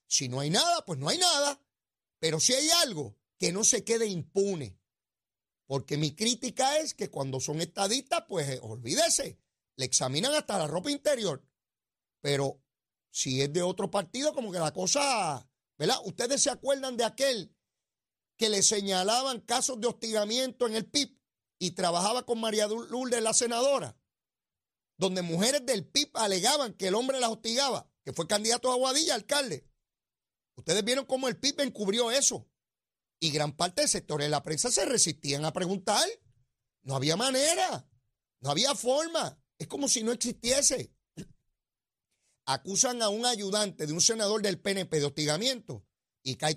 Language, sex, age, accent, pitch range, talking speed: Spanish, male, 40-59, American, 155-255 Hz, 160 wpm